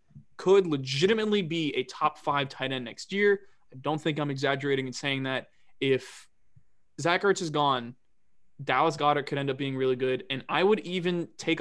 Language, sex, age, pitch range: English, male, 20-39, 130-155 Hz